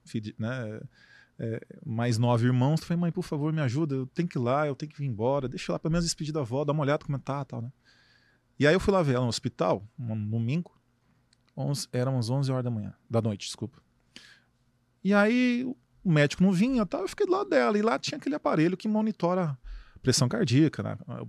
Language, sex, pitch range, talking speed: Portuguese, male, 120-165 Hz, 240 wpm